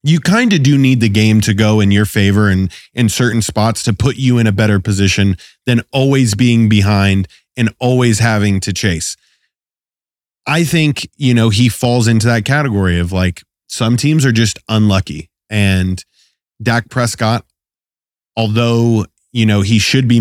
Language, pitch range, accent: English, 105-130 Hz, American